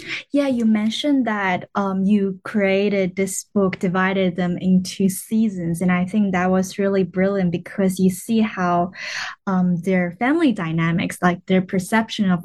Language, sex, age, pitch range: Chinese, female, 10-29, 180-205 Hz